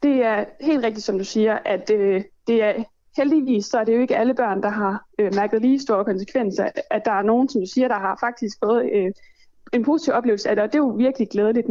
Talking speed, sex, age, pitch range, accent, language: 255 wpm, female, 20-39, 215-275 Hz, native, Danish